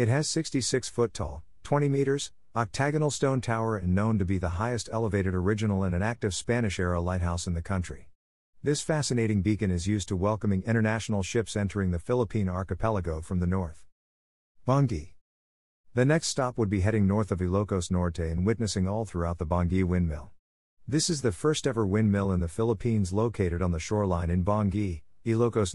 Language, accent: Filipino, American